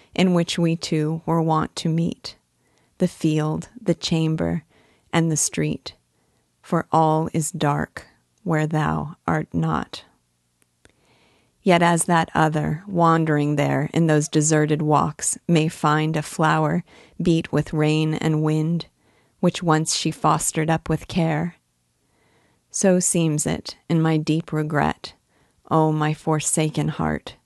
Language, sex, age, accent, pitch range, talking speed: English, female, 40-59, American, 150-170 Hz, 130 wpm